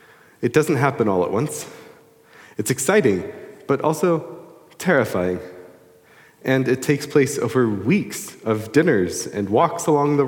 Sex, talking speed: male, 135 wpm